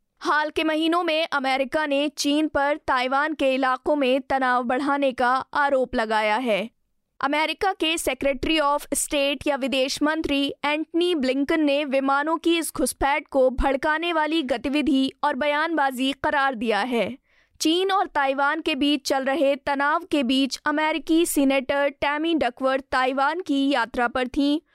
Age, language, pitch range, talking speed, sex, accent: 20-39, Hindi, 265-310 Hz, 150 wpm, female, native